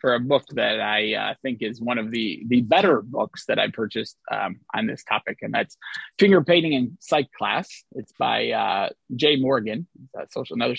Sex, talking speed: male, 195 wpm